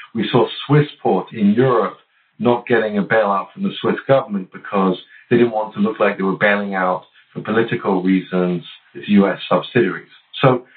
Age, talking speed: 50-69, 180 wpm